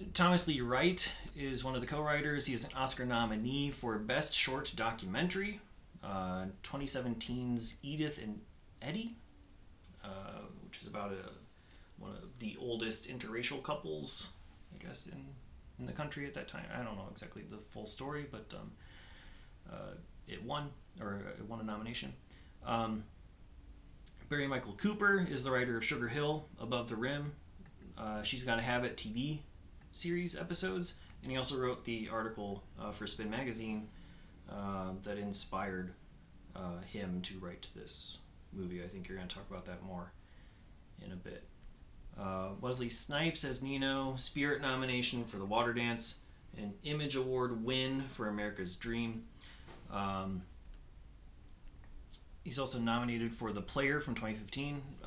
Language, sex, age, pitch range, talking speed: English, male, 30-49, 95-135 Hz, 150 wpm